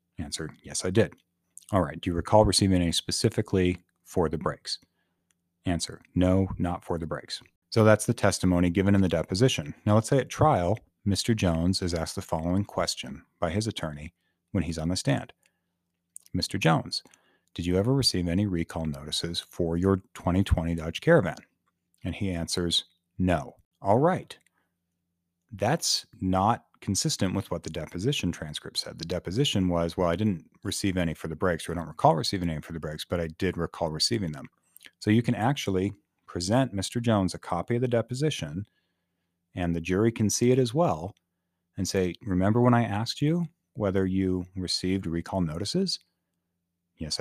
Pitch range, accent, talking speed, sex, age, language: 85-105 Hz, American, 175 wpm, male, 40-59, English